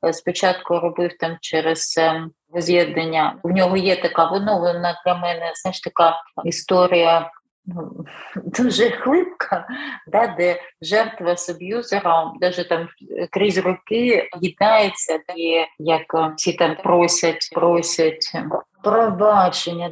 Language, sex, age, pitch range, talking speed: Ukrainian, female, 30-49, 170-200 Hz, 100 wpm